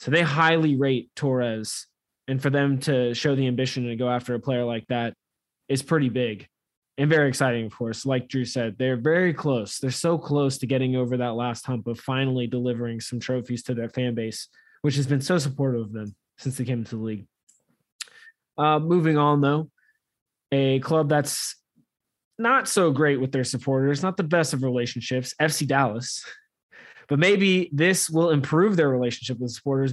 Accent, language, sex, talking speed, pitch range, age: American, English, male, 185 wpm, 125-145 Hz, 20-39